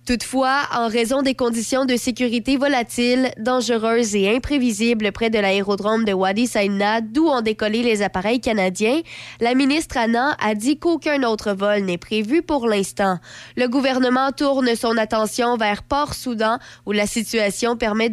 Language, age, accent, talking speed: French, 20-39, Canadian, 150 wpm